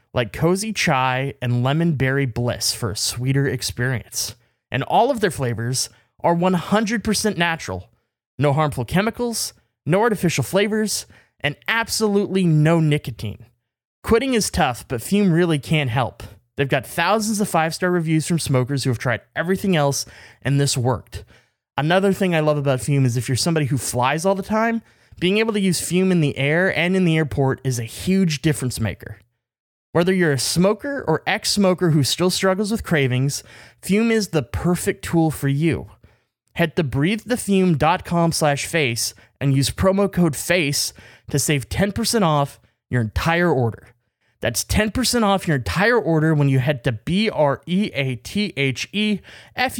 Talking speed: 160 wpm